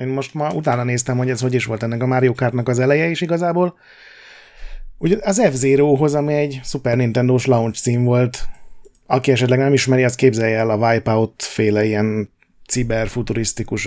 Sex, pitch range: male, 110-140 Hz